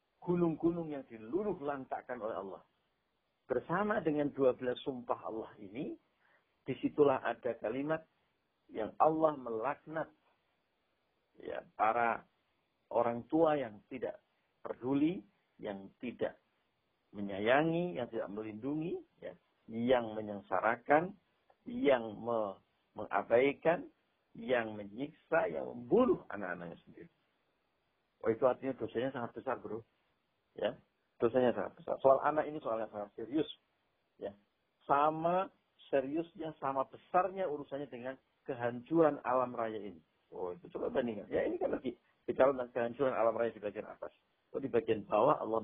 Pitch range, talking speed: 110-150 Hz, 115 wpm